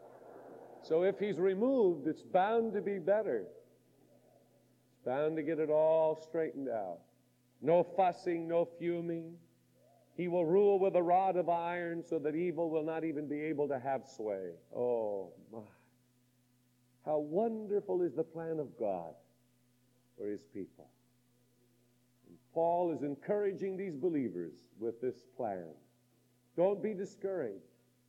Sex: male